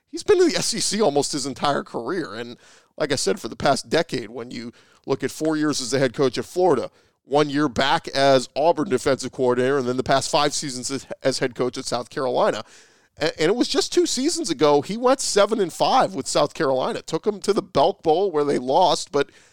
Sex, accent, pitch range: male, American, 135-170 Hz